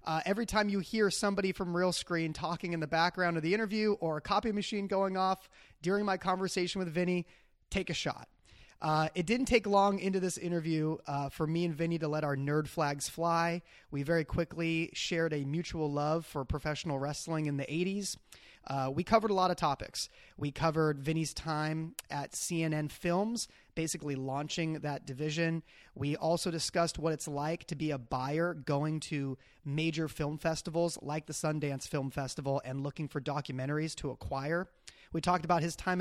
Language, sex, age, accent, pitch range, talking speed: English, male, 30-49, American, 150-185 Hz, 185 wpm